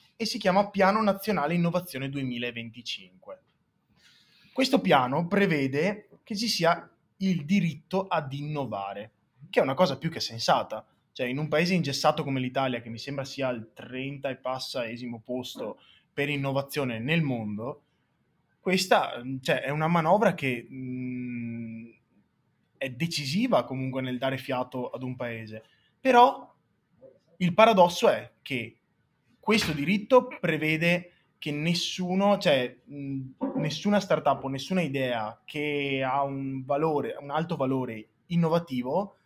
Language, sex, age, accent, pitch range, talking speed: Italian, male, 20-39, native, 125-180 Hz, 130 wpm